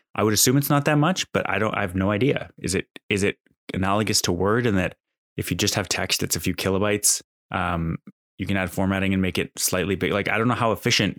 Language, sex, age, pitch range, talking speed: English, male, 20-39, 95-110 Hz, 255 wpm